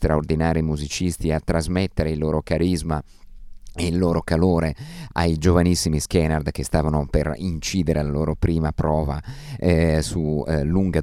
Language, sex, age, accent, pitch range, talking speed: Italian, male, 50-69, native, 75-95 Hz, 140 wpm